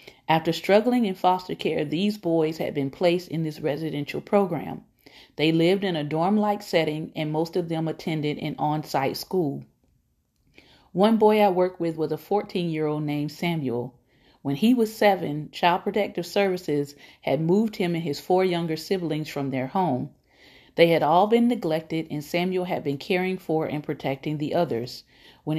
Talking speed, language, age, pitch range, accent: 170 wpm, English, 40-59, 150-185 Hz, American